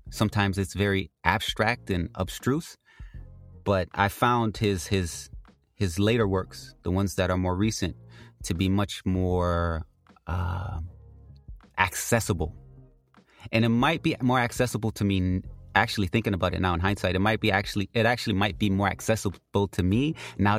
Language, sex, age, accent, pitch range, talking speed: English, male, 30-49, American, 90-110 Hz, 155 wpm